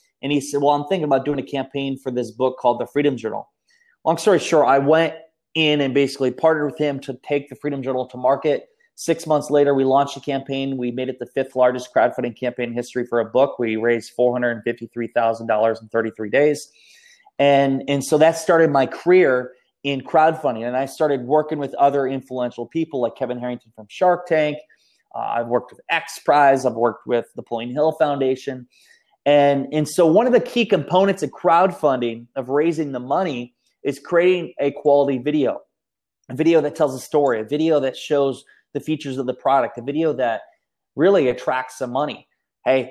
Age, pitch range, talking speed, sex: 20-39, 125-155 Hz, 195 wpm, male